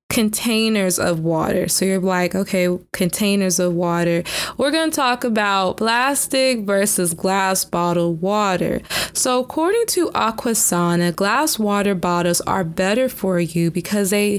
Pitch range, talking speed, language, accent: 180-240 Hz, 135 wpm, English, American